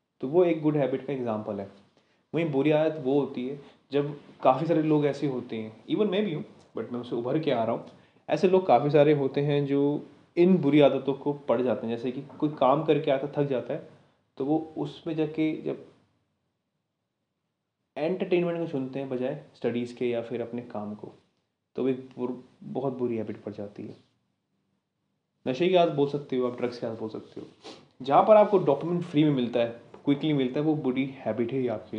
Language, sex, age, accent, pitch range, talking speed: Hindi, male, 20-39, native, 120-155 Hz, 210 wpm